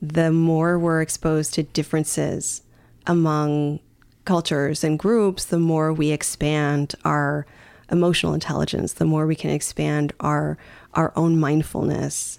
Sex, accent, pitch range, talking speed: female, American, 150-170 Hz, 125 wpm